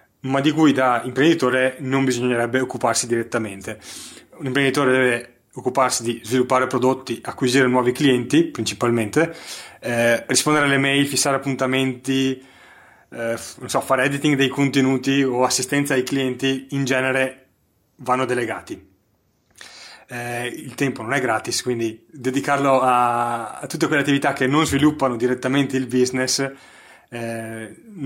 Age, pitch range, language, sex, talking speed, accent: 30-49, 125-140 Hz, Italian, male, 130 wpm, native